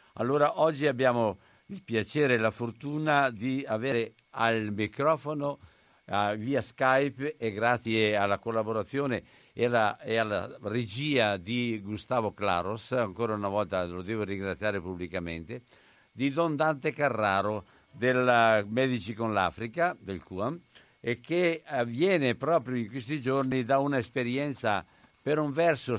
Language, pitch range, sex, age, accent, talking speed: Italian, 110-145 Hz, male, 60-79, native, 130 wpm